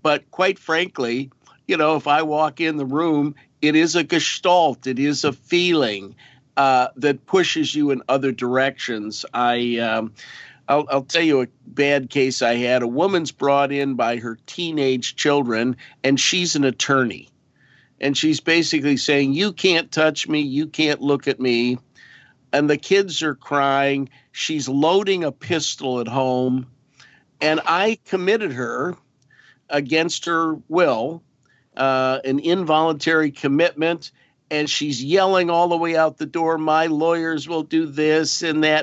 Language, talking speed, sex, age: English, 155 wpm, male, 50-69